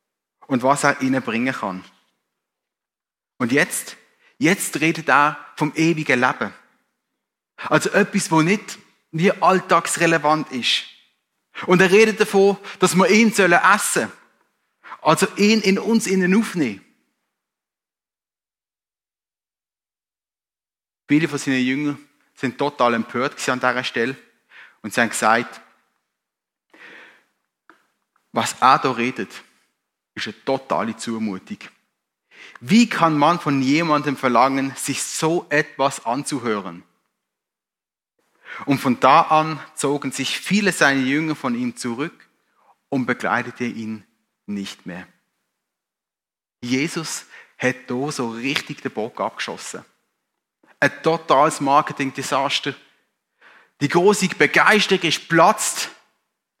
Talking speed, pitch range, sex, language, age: 105 wpm, 125-175 Hz, male, German, 30-49